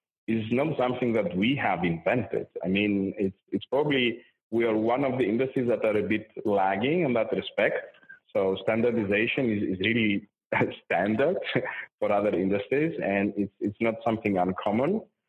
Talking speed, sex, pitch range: 160 wpm, male, 100-125 Hz